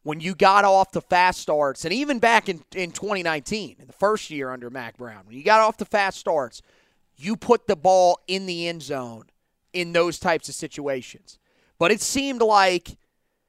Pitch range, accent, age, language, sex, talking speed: 165-200 Hz, American, 30-49, English, male, 195 wpm